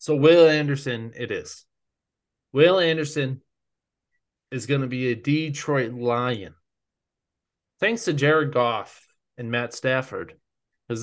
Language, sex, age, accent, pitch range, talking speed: English, male, 20-39, American, 115-150 Hz, 120 wpm